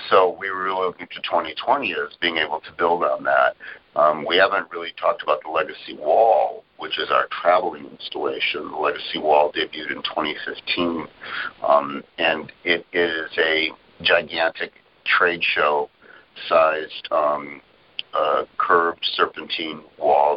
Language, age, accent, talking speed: English, 50-69, American, 135 wpm